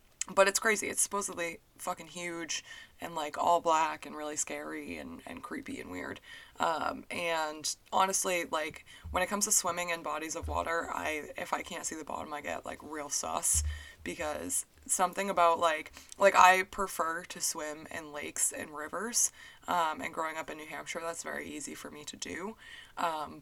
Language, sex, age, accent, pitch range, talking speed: English, female, 20-39, American, 155-190 Hz, 185 wpm